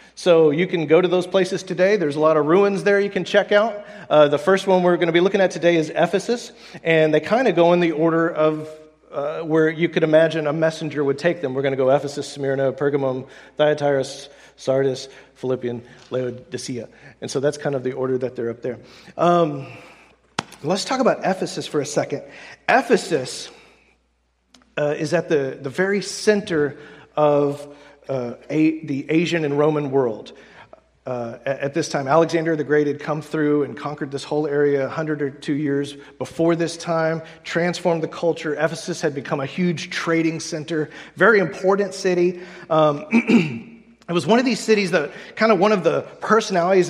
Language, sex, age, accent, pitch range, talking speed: English, male, 40-59, American, 145-180 Hz, 185 wpm